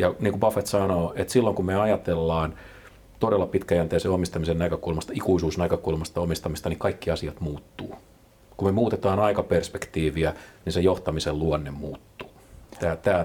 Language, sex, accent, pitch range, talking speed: Finnish, male, native, 80-95 Hz, 140 wpm